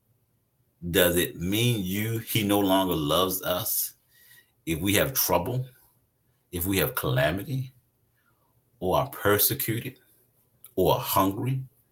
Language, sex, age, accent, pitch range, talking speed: English, male, 50-69, American, 100-135 Hz, 110 wpm